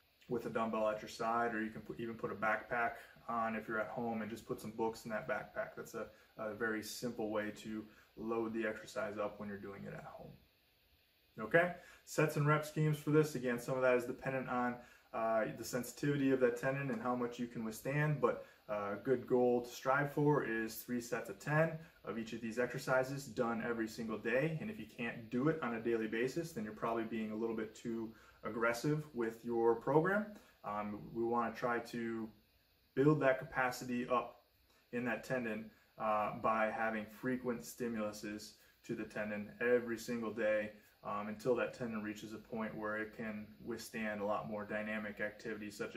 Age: 20-39